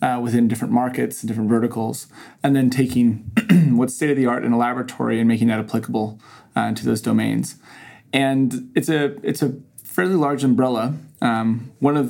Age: 20-39